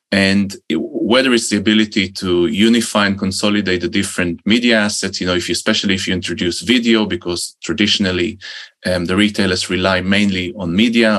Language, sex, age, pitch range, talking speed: English, male, 20-39, 95-110 Hz, 165 wpm